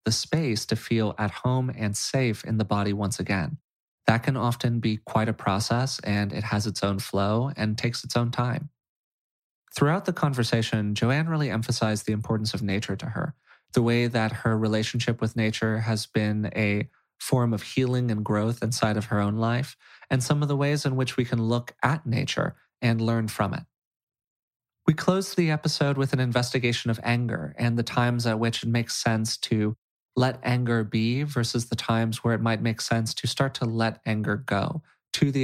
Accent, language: American, English